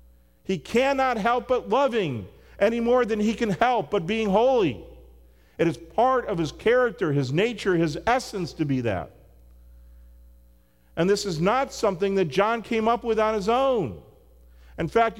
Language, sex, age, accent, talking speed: English, male, 40-59, American, 165 wpm